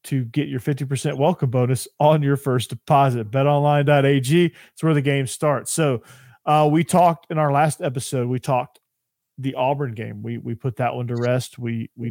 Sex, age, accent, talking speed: male, 40-59, American, 190 wpm